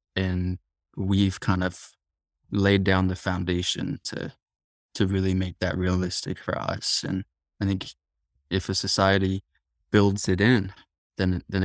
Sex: male